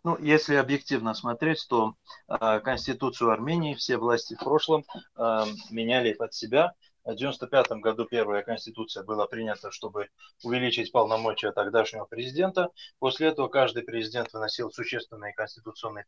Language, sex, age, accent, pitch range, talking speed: Ukrainian, male, 20-39, native, 120-160 Hz, 130 wpm